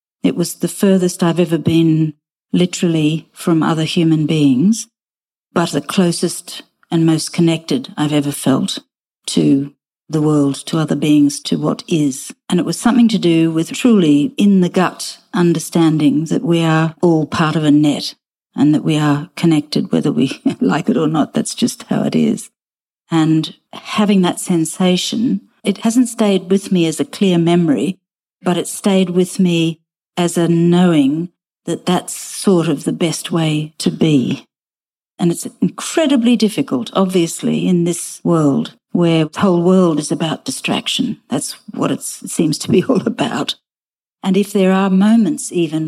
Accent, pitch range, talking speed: Australian, 160-195 Hz, 165 wpm